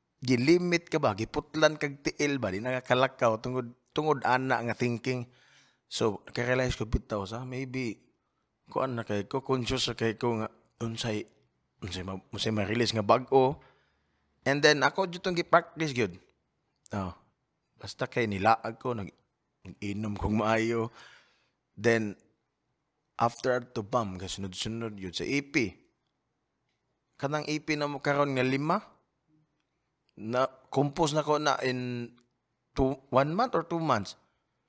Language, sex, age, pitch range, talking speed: Filipino, male, 20-39, 115-140 Hz, 130 wpm